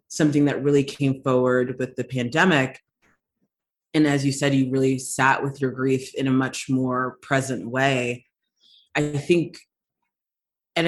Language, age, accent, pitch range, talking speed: English, 30-49, American, 125-140 Hz, 150 wpm